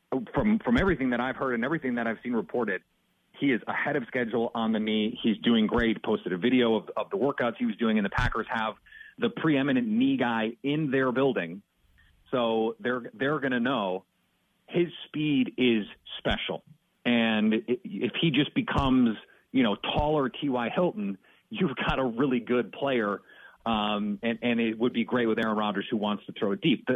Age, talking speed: 40-59, 195 wpm